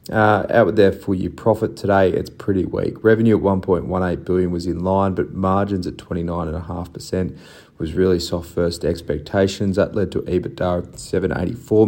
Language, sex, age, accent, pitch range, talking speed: English, male, 30-49, Australian, 90-100 Hz, 185 wpm